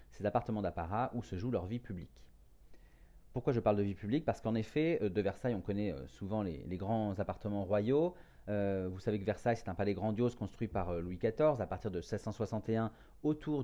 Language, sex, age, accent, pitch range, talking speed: French, male, 40-59, French, 100-125 Hz, 200 wpm